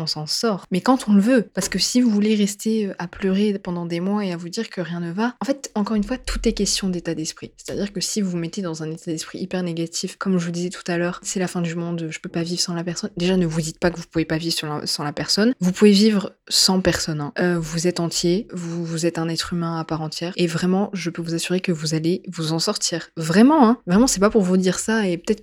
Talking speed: 290 wpm